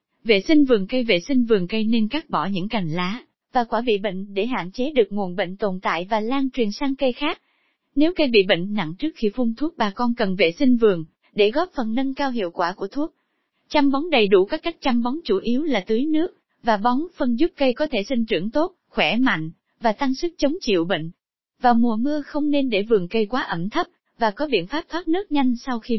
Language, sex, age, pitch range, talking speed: Vietnamese, female, 20-39, 215-280 Hz, 245 wpm